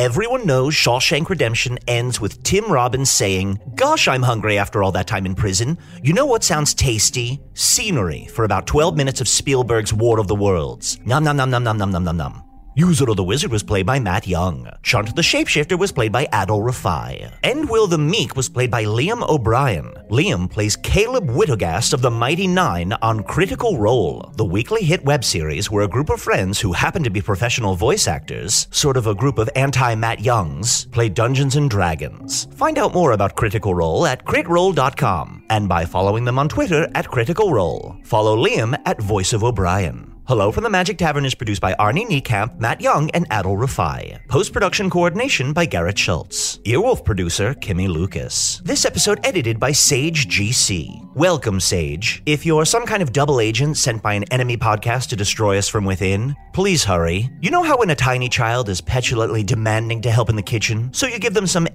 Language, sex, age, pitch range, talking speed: English, male, 40-59, 100-145 Hz, 195 wpm